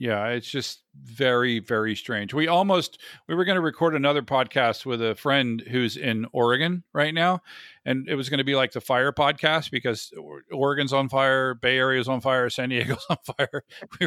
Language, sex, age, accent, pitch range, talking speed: English, male, 50-69, American, 120-155 Hz, 200 wpm